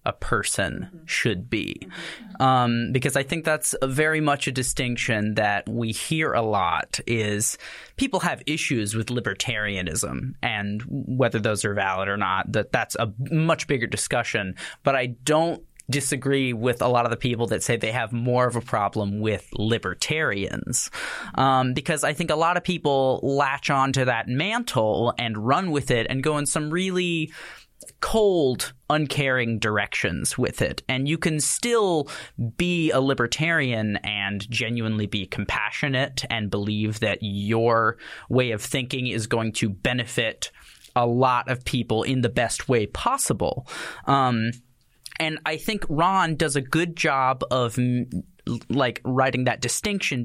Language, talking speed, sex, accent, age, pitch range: English, 150 wpm, male, American, 20-39, 115-150 Hz